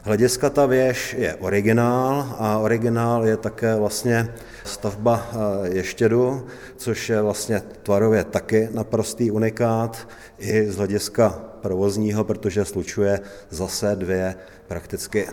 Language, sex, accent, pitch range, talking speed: Czech, male, native, 100-115 Hz, 110 wpm